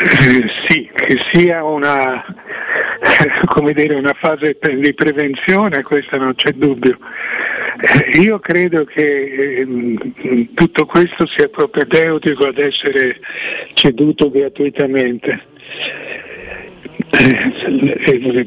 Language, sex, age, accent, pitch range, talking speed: Italian, male, 60-79, native, 140-180 Hz, 95 wpm